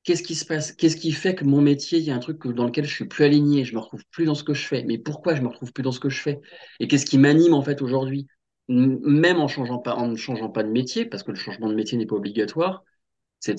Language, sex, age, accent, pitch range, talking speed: French, male, 30-49, French, 115-155 Hz, 315 wpm